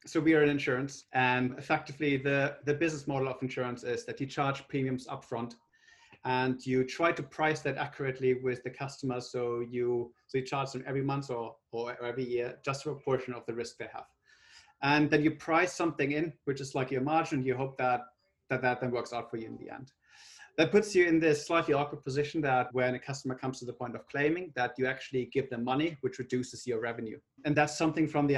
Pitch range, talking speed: 125-145 Hz, 230 wpm